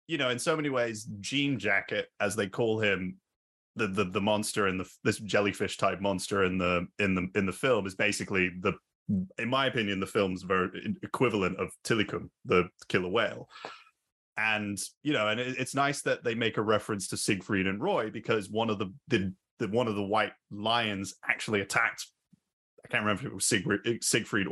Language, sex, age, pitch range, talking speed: English, male, 20-39, 95-120 Hz, 195 wpm